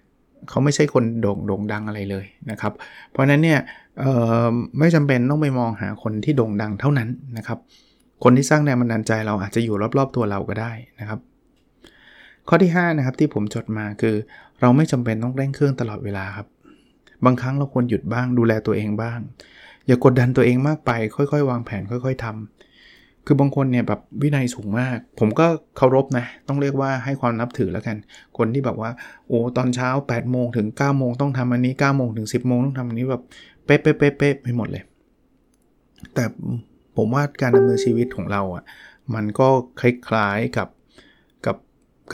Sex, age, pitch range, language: male, 20-39, 110-135 Hz, Thai